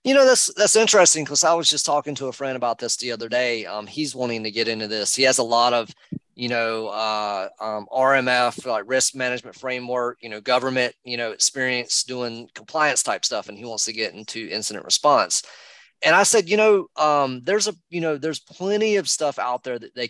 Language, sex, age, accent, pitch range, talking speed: English, male, 30-49, American, 120-150 Hz, 225 wpm